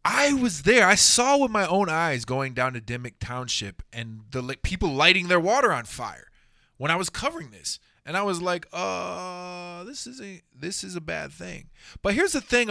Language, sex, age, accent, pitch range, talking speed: English, male, 20-39, American, 125-185 Hz, 215 wpm